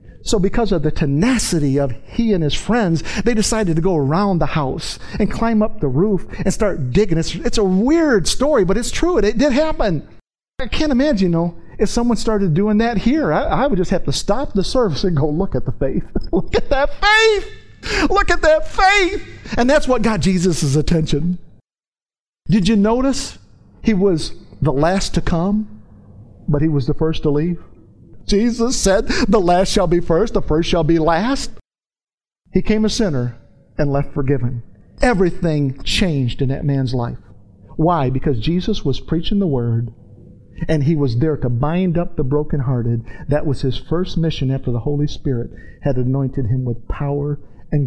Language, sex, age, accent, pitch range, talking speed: English, male, 50-69, American, 135-200 Hz, 185 wpm